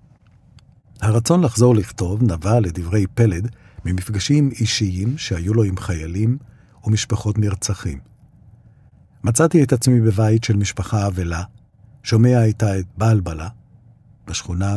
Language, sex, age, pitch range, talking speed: Hebrew, male, 50-69, 95-120 Hz, 105 wpm